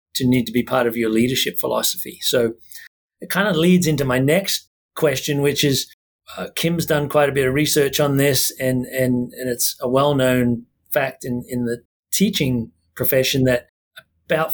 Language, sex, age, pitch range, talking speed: English, male, 40-59, 125-145 Hz, 180 wpm